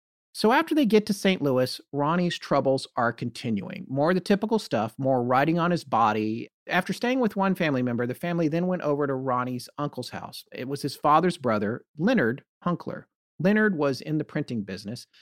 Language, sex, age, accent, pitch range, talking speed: English, male, 40-59, American, 120-165 Hz, 195 wpm